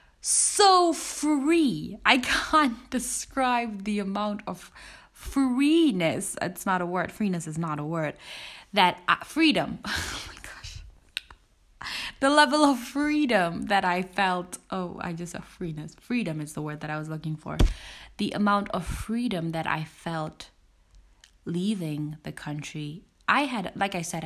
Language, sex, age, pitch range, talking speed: English, female, 20-39, 160-205 Hz, 150 wpm